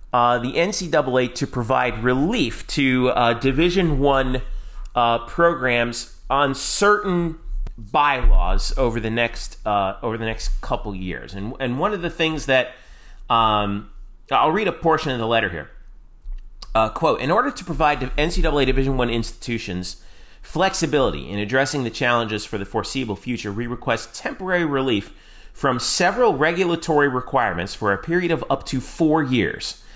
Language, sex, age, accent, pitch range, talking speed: English, male, 30-49, American, 110-145 Hz, 150 wpm